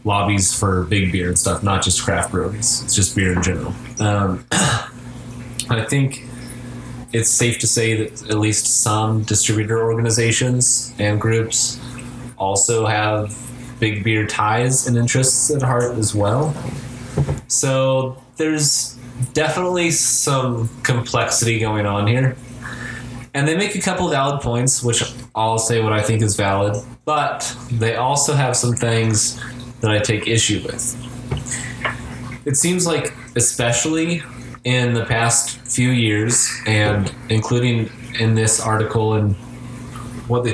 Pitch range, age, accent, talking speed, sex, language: 110-125 Hz, 20-39, American, 140 wpm, male, English